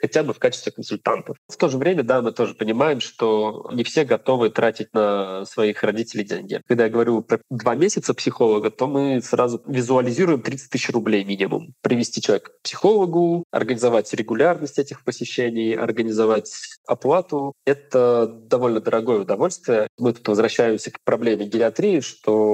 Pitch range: 110-140 Hz